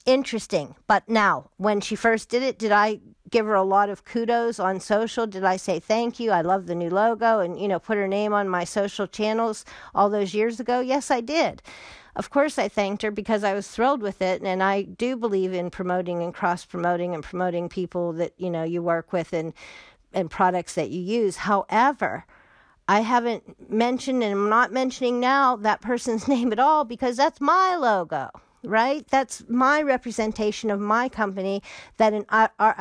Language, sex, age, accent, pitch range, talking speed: English, female, 50-69, American, 195-235 Hz, 200 wpm